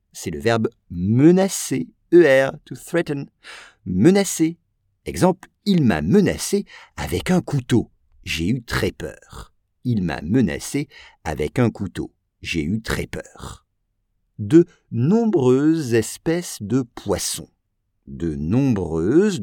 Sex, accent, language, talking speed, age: male, French, English, 110 wpm, 50-69